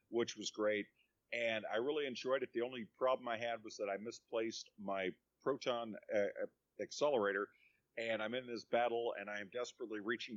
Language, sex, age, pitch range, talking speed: English, male, 50-69, 100-120 Hz, 180 wpm